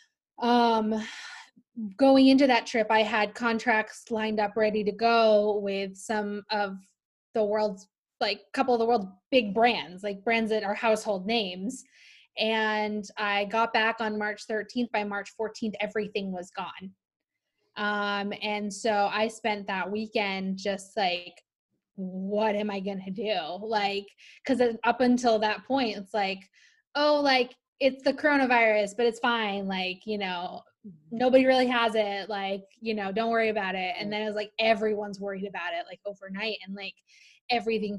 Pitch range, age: 205-230 Hz, 20-39